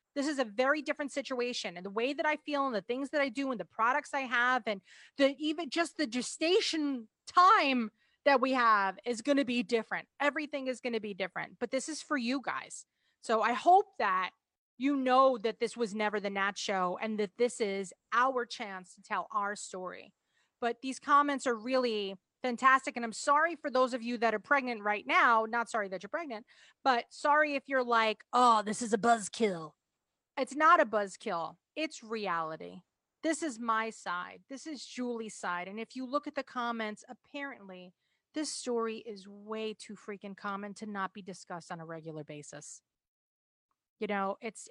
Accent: American